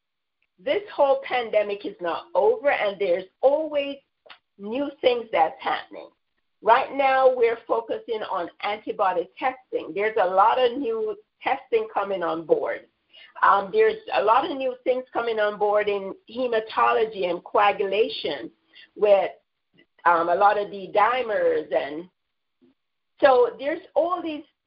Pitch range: 205-345 Hz